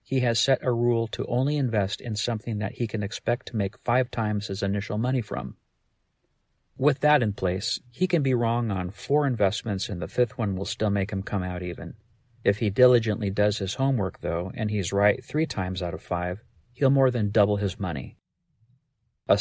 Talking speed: 205 wpm